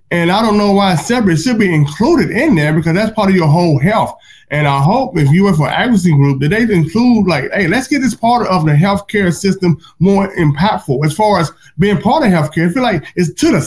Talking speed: 240 wpm